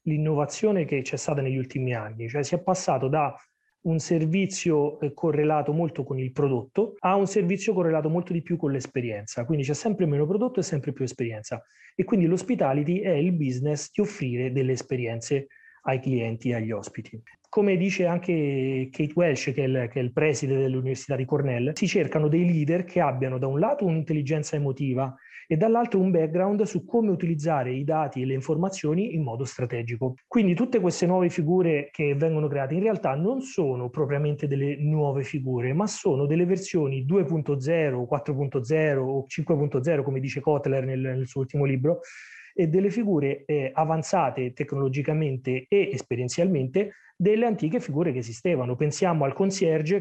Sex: male